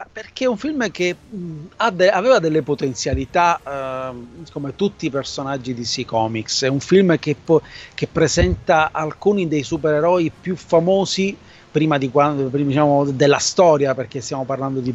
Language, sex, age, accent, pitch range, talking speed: Italian, male, 30-49, native, 140-165 Hz, 145 wpm